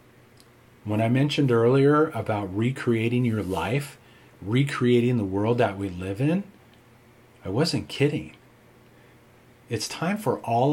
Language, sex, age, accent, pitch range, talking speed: English, male, 40-59, American, 105-135 Hz, 125 wpm